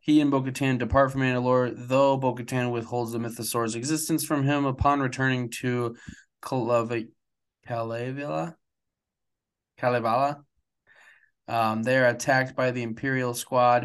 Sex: male